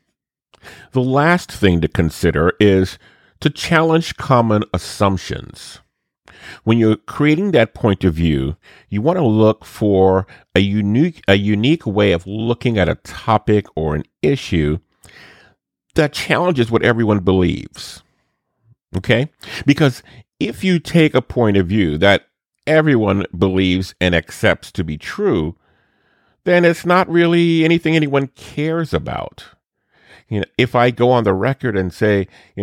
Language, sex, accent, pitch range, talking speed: English, male, American, 90-125 Hz, 140 wpm